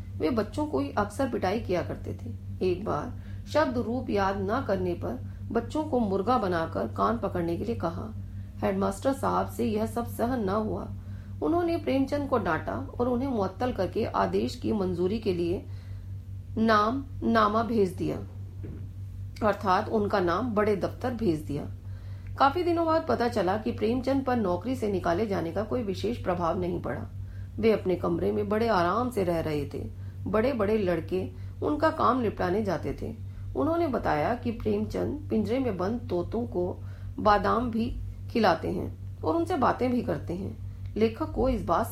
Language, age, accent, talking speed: Hindi, 40-59, native, 165 wpm